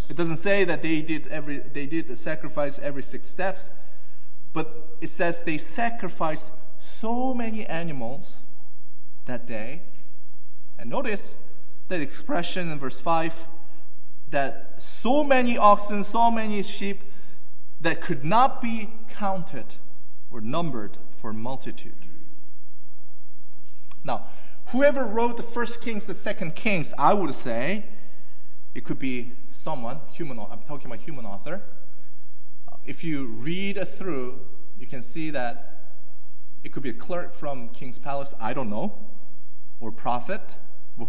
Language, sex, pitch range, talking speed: English, male, 140-210 Hz, 135 wpm